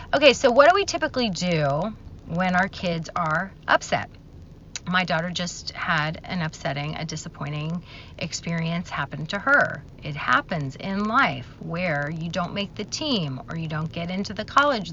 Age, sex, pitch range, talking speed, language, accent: 30-49, female, 155-210 Hz, 165 wpm, English, American